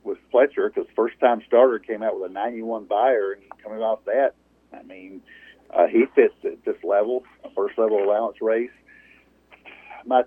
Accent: American